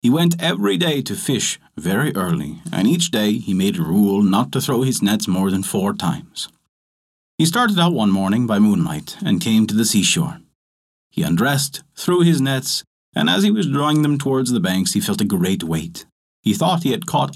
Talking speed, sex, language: 205 wpm, male, English